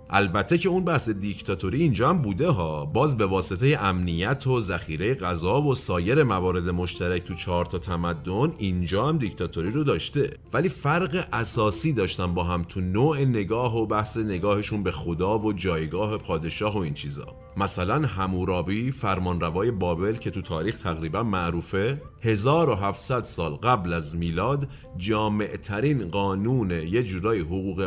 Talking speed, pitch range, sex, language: 150 wpm, 90-130 Hz, male, Persian